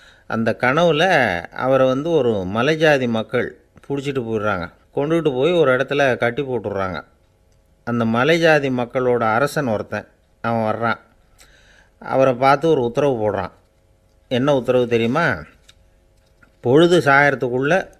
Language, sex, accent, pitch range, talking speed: Tamil, male, native, 110-140 Hz, 115 wpm